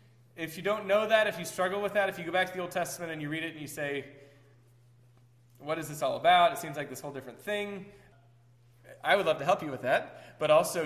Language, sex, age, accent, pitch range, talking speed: English, male, 20-39, American, 130-170 Hz, 260 wpm